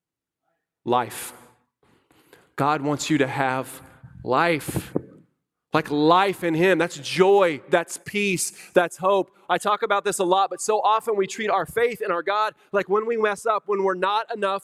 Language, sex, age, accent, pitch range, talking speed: English, male, 30-49, American, 170-240 Hz, 170 wpm